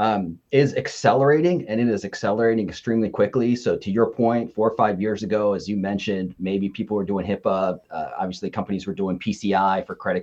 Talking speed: 200 wpm